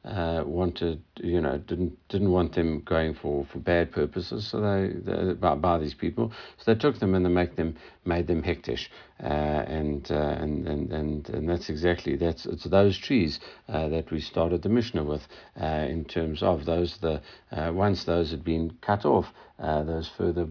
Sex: male